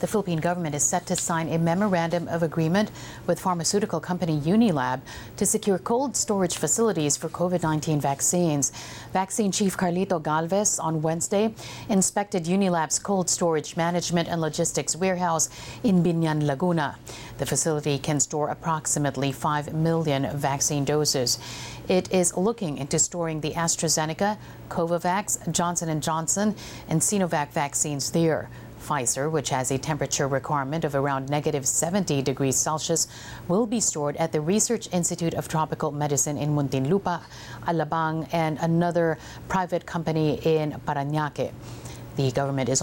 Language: English